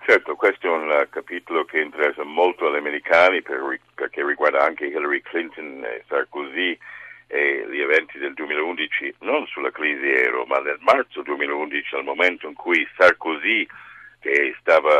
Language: Italian